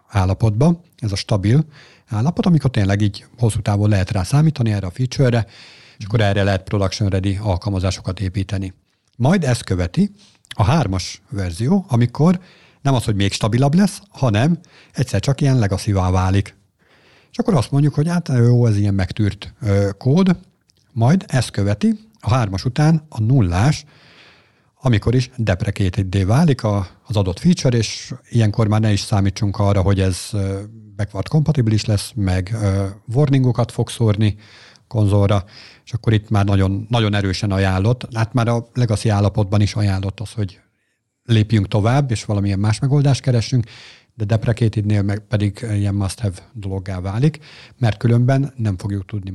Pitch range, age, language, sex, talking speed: 100-130 Hz, 50-69, Hungarian, male, 150 wpm